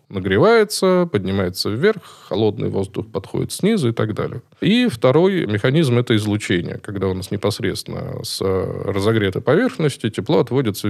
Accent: native